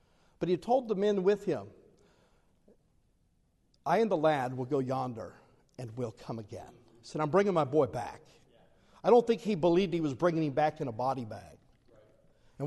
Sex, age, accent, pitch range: male, 50-69, American, 155-225 Hz